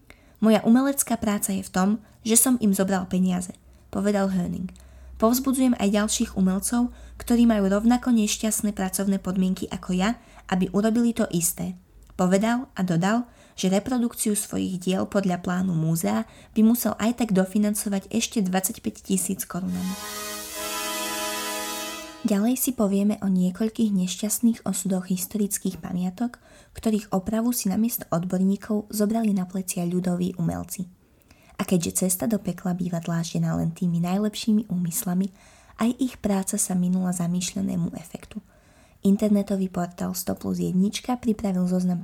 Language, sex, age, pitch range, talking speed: Slovak, female, 20-39, 185-220 Hz, 130 wpm